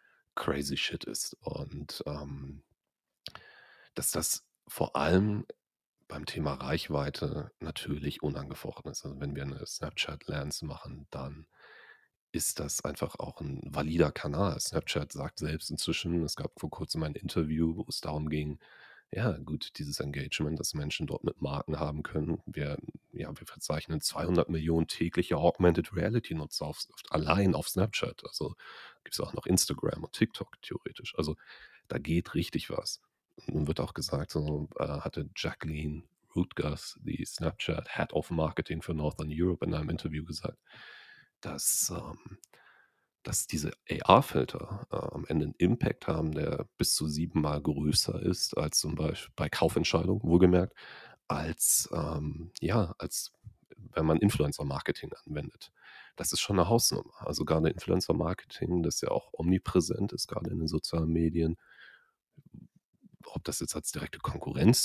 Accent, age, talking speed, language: German, 40-59, 145 wpm, German